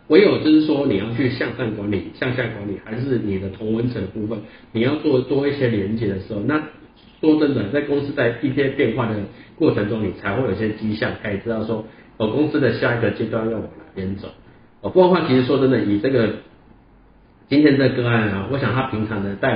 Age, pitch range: 50-69, 105-130 Hz